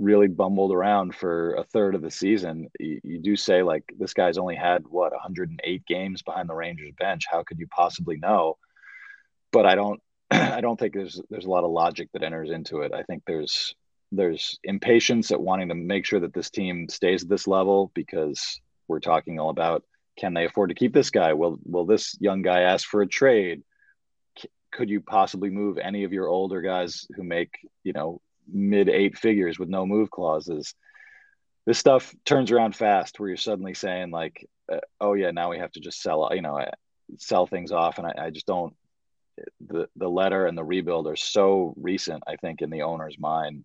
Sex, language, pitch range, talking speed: male, English, 85-100 Hz, 205 wpm